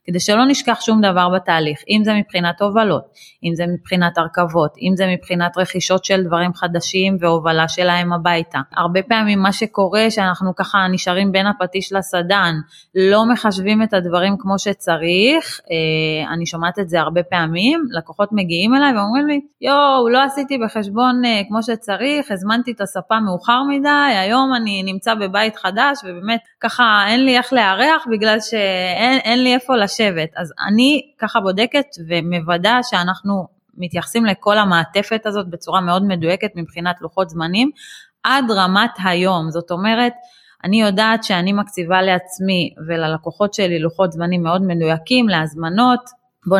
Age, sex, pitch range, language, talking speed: 20-39, female, 170-220 Hz, Hebrew, 140 wpm